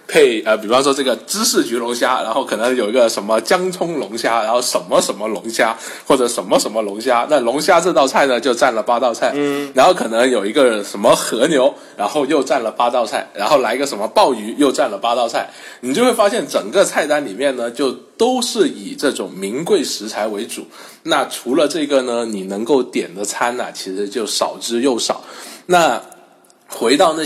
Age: 20-39